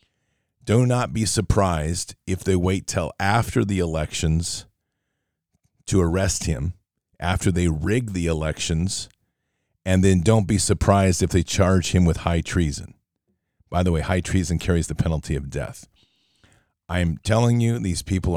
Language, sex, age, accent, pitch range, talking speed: English, male, 40-59, American, 85-100 Hz, 155 wpm